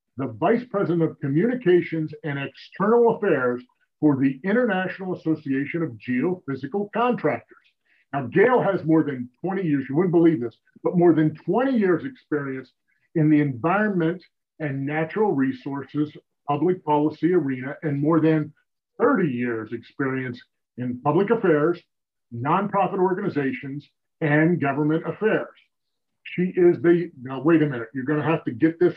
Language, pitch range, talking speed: English, 145-185 Hz, 145 wpm